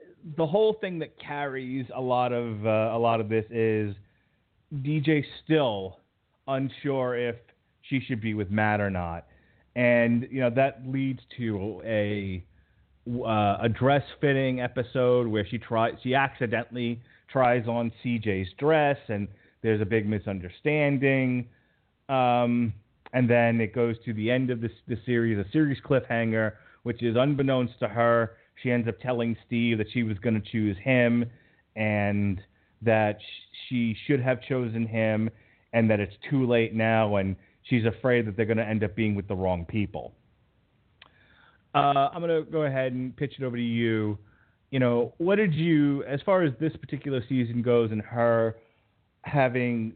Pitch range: 110-130 Hz